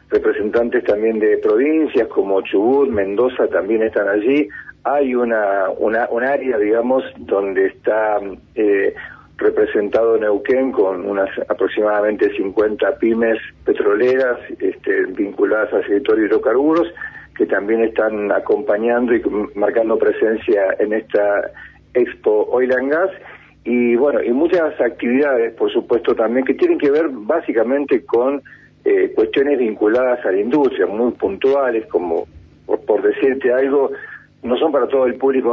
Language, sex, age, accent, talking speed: Spanish, male, 50-69, Argentinian, 130 wpm